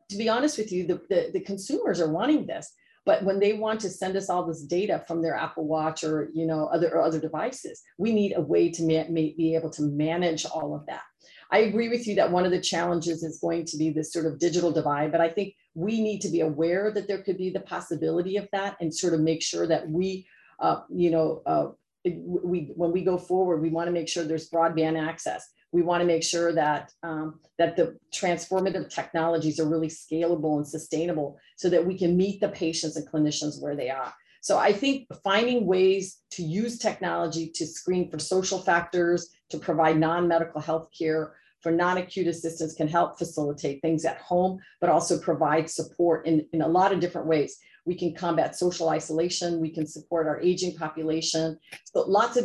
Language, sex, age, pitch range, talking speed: English, female, 40-59, 160-185 Hz, 205 wpm